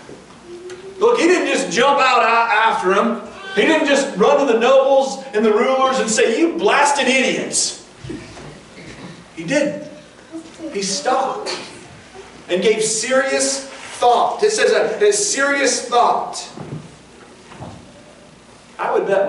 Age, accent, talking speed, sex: 40-59, American, 125 wpm, male